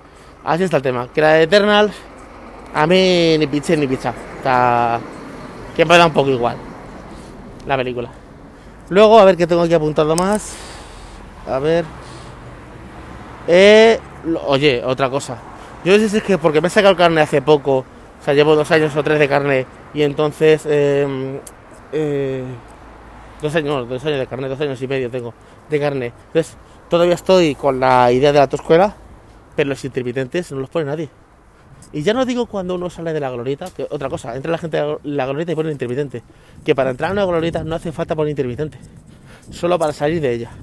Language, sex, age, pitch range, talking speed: Spanish, male, 30-49, 130-170 Hz, 195 wpm